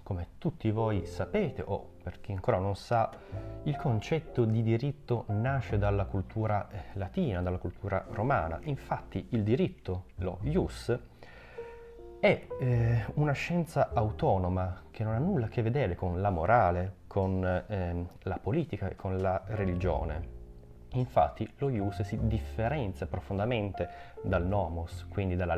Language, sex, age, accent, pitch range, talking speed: Italian, male, 30-49, native, 90-115 Hz, 140 wpm